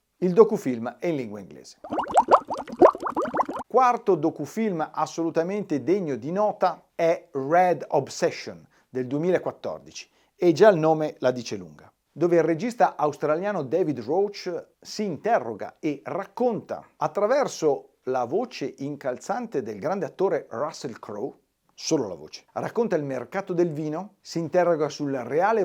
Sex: male